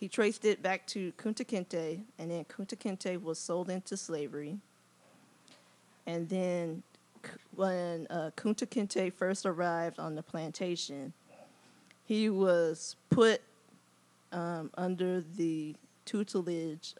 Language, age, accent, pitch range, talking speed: English, 20-39, American, 160-195 Hz, 105 wpm